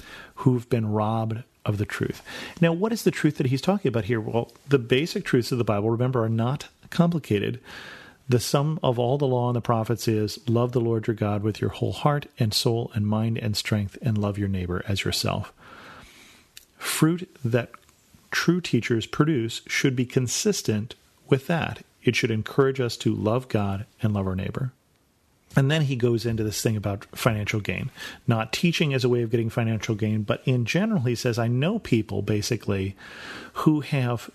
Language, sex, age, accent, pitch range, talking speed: English, male, 40-59, American, 110-135 Hz, 190 wpm